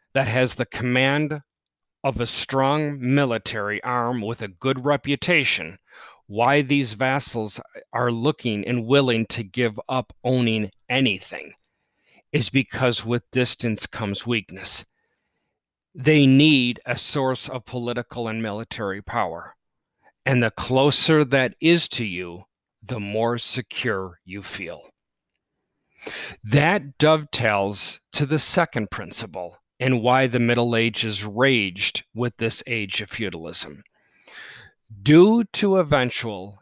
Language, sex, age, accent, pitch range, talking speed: English, male, 40-59, American, 110-140 Hz, 120 wpm